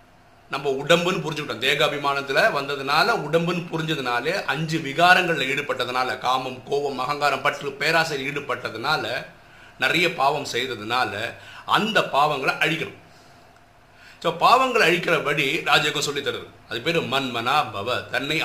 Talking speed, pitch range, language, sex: 100 wpm, 130-175 Hz, Tamil, male